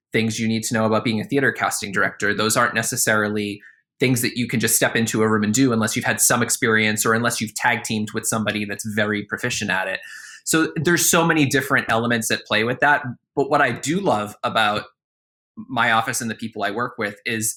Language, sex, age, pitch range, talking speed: English, male, 20-39, 110-125 Hz, 230 wpm